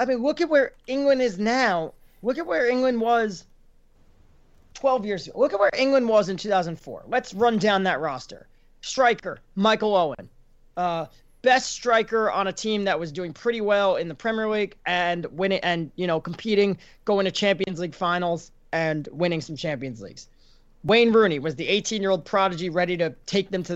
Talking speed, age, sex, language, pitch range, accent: 185 wpm, 30-49, male, English, 170-220 Hz, American